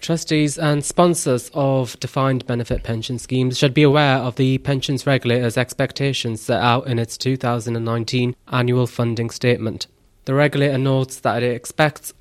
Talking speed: 145 wpm